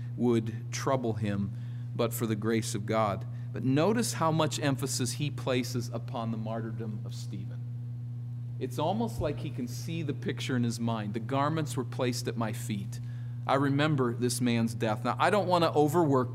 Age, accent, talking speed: 40-59, American, 185 wpm